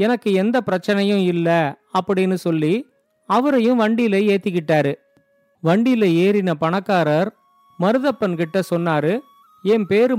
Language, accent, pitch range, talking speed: Tamil, native, 175-235 Hz, 100 wpm